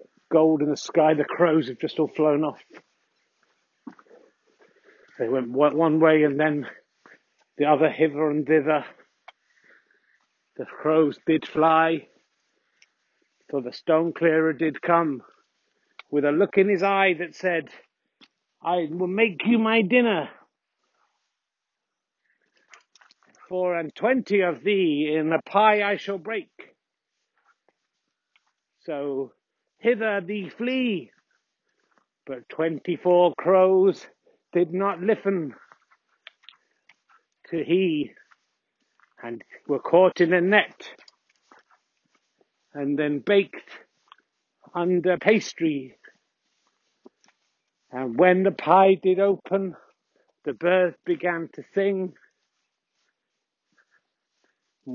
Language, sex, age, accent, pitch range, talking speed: English, male, 50-69, British, 150-190 Hz, 100 wpm